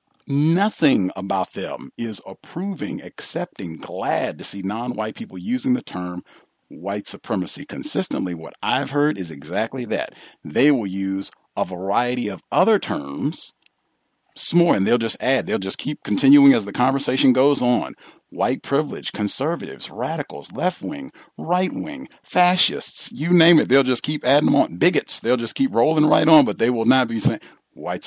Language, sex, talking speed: English, male, 165 wpm